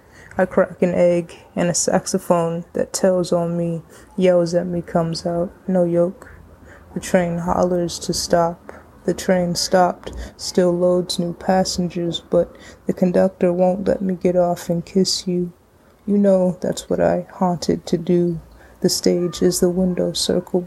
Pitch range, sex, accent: 175-185 Hz, female, American